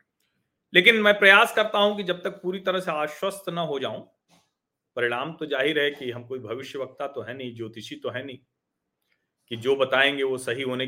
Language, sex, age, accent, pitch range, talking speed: Hindi, male, 40-59, native, 135-215 Hz, 200 wpm